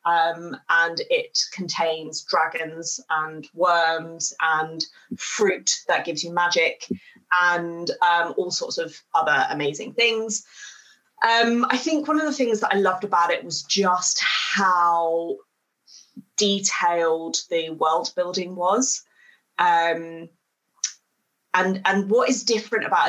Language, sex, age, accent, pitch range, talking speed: English, female, 20-39, British, 165-225 Hz, 125 wpm